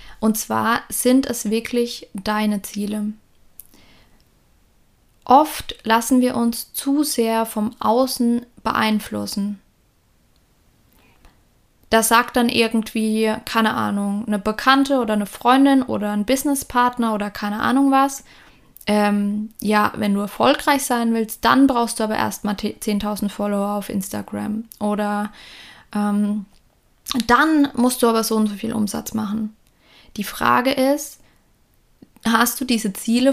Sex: female